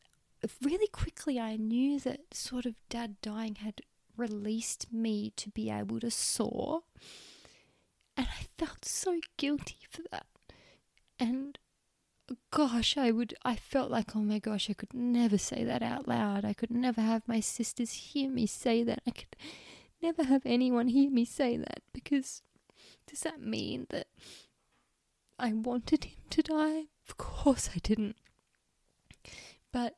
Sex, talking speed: female, 150 wpm